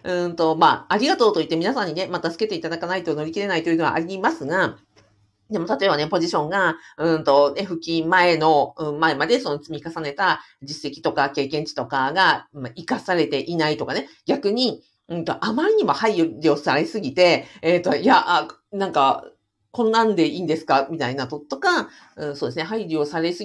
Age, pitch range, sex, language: 50-69, 150-195 Hz, female, Japanese